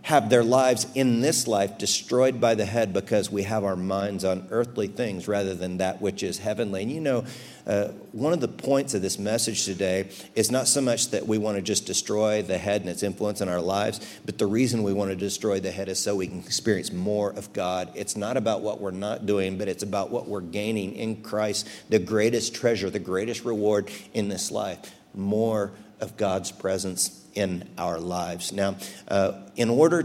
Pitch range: 95-115 Hz